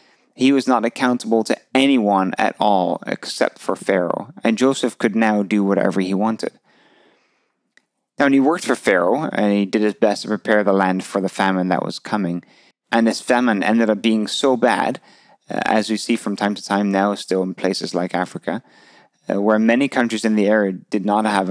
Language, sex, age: English, male, 30-49